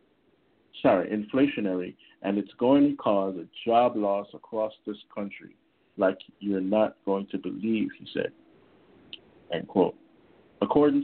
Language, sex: English, male